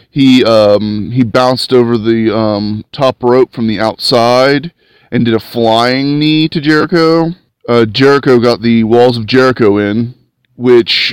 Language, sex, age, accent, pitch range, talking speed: English, male, 30-49, American, 110-135 Hz, 150 wpm